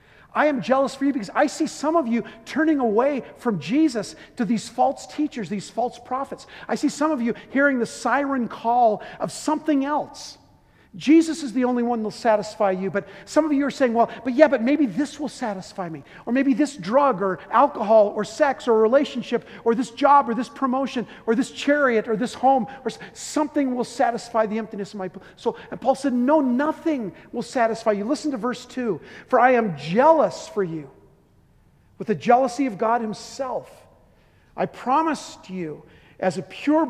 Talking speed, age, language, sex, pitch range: 195 wpm, 50-69, English, male, 210-280 Hz